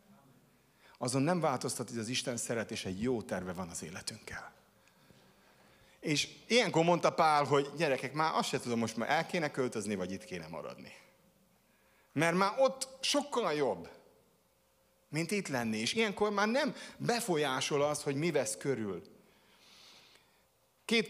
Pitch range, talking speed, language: 125-175 Hz, 145 wpm, Hungarian